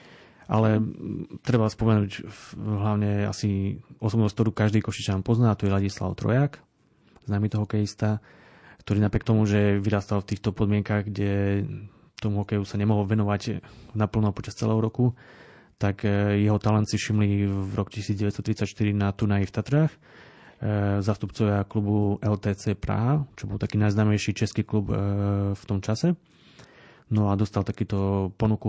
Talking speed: 135 wpm